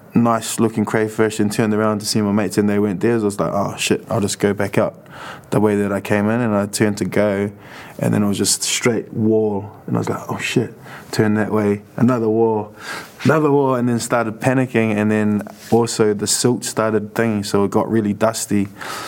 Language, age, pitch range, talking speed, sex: English, 20-39, 105-120 Hz, 225 wpm, male